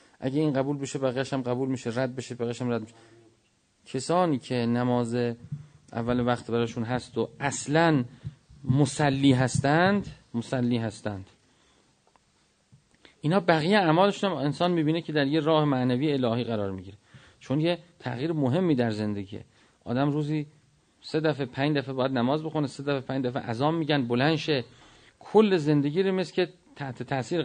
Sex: male